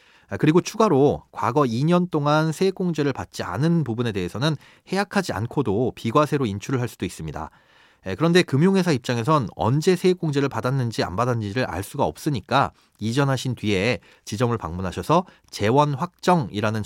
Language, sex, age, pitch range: Korean, male, 30-49, 115-170 Hz